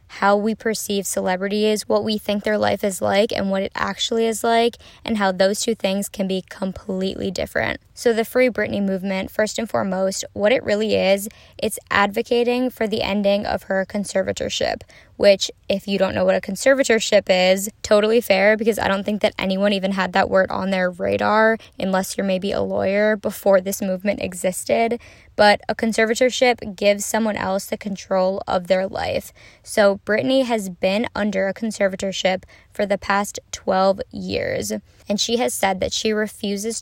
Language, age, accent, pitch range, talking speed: English, 10-29, American, 190-220 Hz, 180 wpm